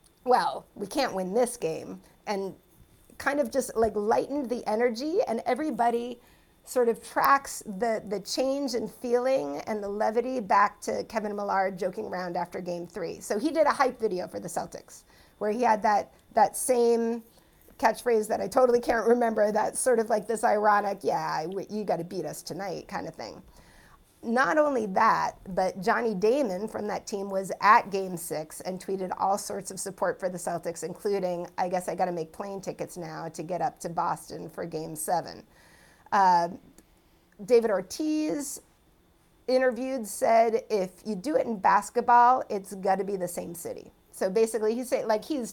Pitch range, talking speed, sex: 190-245 Hz, 175 wpm, female